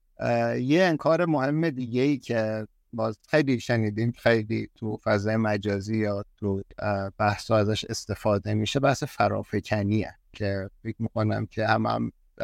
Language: Persian